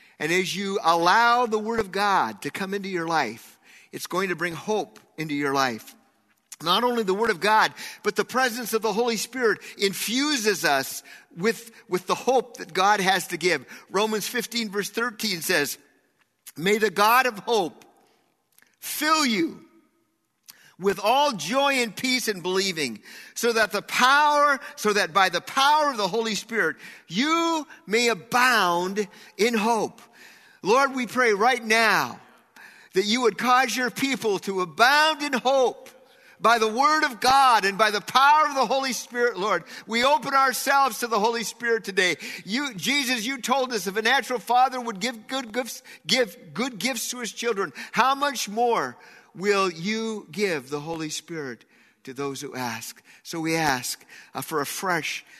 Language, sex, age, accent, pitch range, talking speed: English, male, 50-69, American, 180-255 Hz, 165 wpm